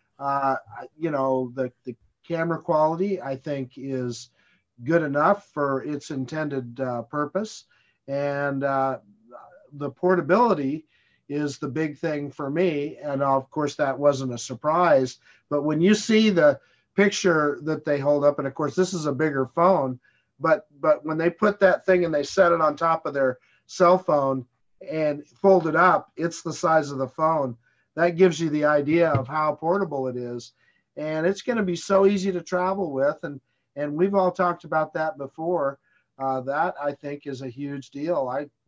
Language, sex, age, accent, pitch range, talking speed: English, male, 50-69, American, 135-170 Hz, 180 wpm